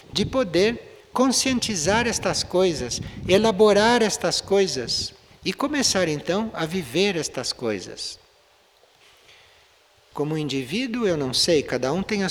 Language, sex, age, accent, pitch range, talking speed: Portuguese, male, 60-79, Brazilian, 165-235 Hz, 115 wpm